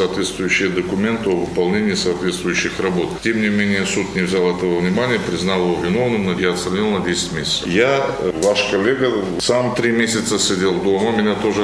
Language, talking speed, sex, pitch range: Romanian, 170 wpm, male, 95-125 Hz